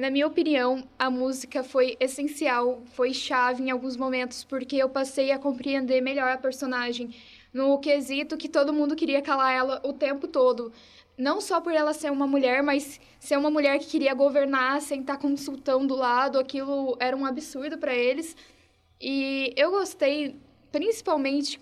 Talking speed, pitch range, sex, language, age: 170 wpm, 260-295 Hz, female, Portuguese, 10-29